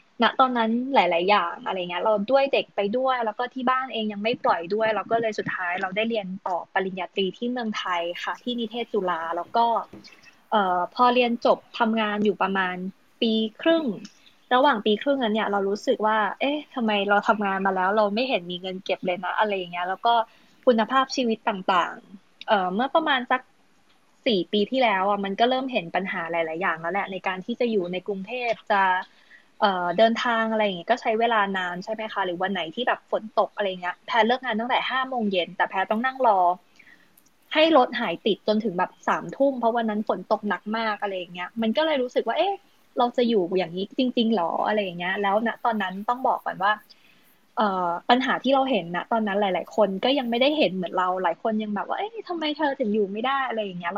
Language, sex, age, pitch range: Thai, female, 20-39, 190-245 Hz